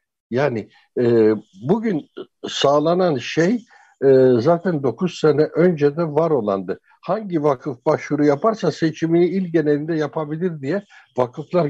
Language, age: Turkish, 60-79